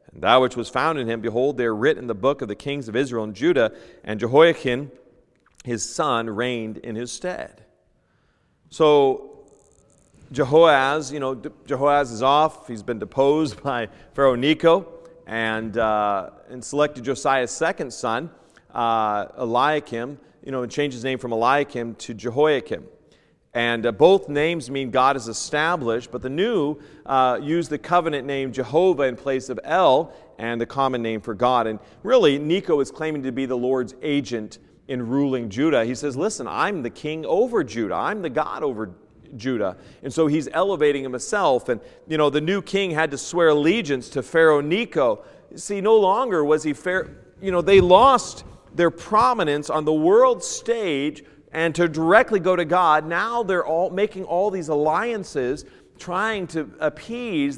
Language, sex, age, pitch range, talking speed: English, male, 40-59, 125-175 Hz, 170 wpm